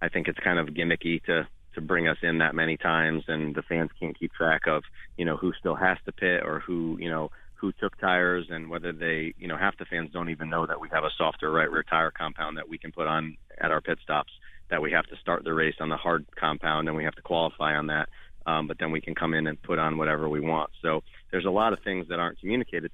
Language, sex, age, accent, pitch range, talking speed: English, male, 30-49, American, 80-85 Hz, 270 wpm